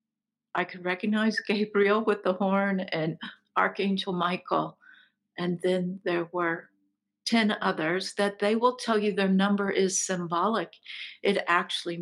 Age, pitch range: 50-69, 180-215 Hz